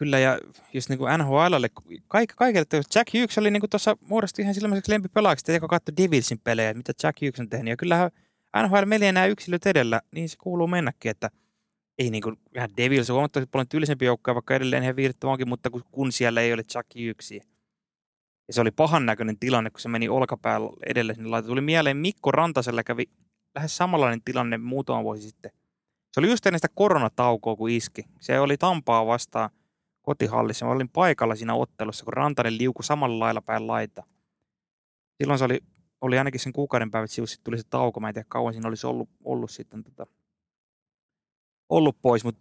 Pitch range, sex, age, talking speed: 115-150 Hz, male, 20-39, 180 wpm